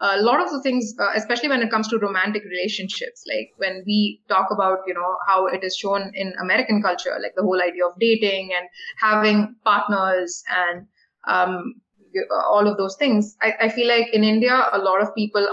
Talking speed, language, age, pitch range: 195 wpm, English, 20-39, 200-240 Hz